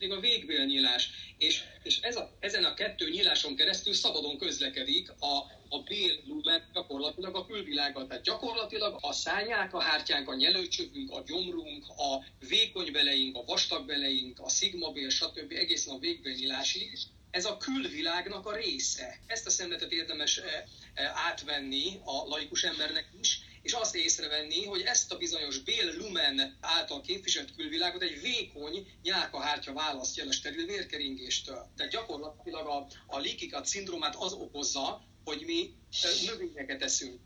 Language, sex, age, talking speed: Hungarian, male, 30-49, 135 wpm